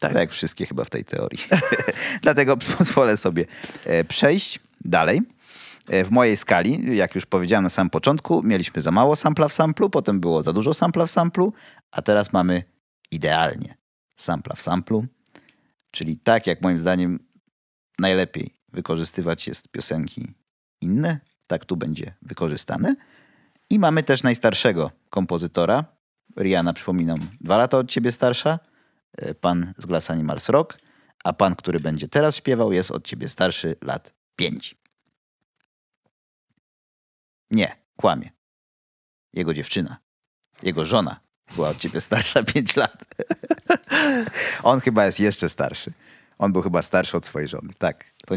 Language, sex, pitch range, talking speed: Polish, male, 90-145 Hz, 140 wpm